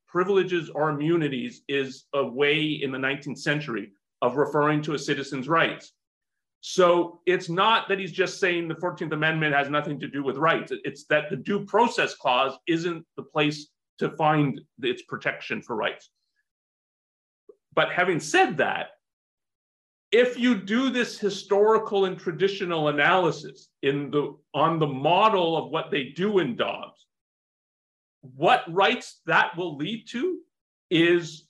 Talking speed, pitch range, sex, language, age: 145 wpm, 145-185 Hz, male, English, 40-59